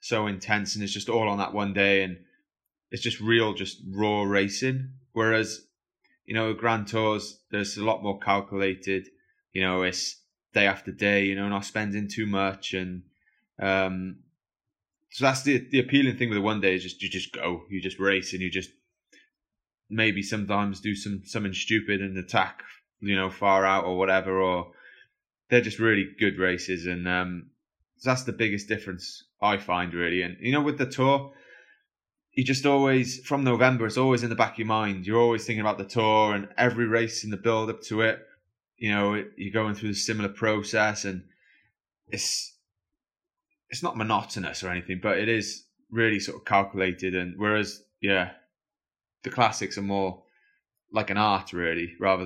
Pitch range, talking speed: 95-110 Hz, 185 wpm